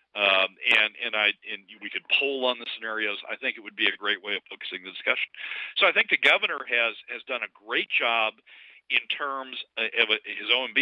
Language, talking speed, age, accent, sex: English, 215 wpm, 50-69, American, male